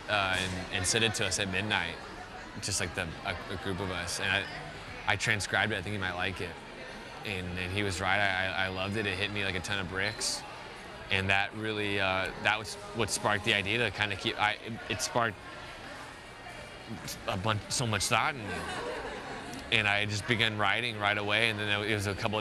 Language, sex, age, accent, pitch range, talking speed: English, male, 20-39, American, 95-115 Hz, 220 wpm